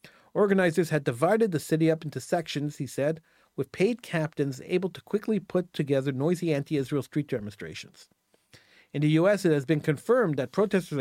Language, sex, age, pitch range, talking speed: English, male, 50-69, 140-180 Hz, 170 wpm